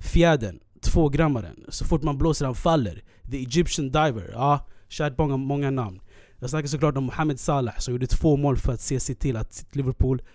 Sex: male